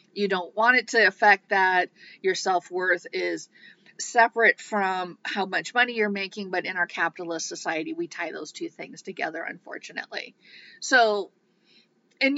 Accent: American